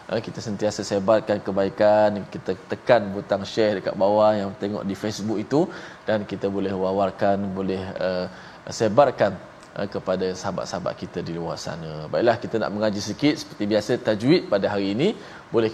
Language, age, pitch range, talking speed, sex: Malayalam, 20-39, 105-140 Hz, 150 wpm, male